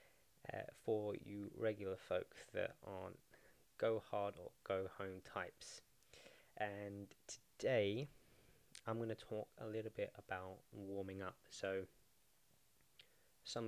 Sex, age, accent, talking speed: male, 20-39, British, 120 wpm